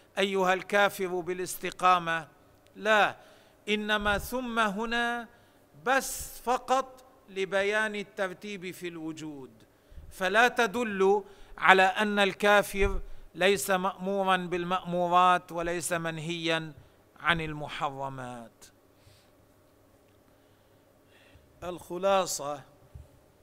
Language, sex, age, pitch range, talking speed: Arabic, male, 50-69, 140-180 Hz, 65 wpm